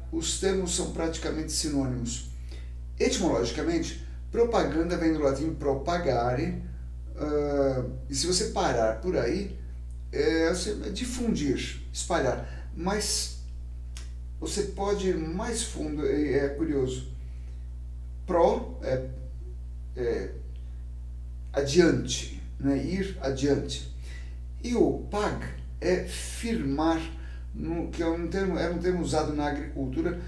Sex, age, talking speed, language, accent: male, 60-79, 105 wpm, Portuguese, Brazilian